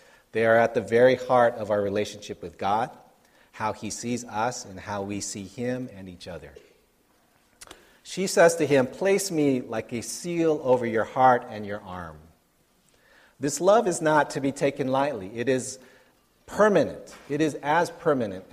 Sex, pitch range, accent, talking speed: male, 105-140 Hz, American, 170 wpm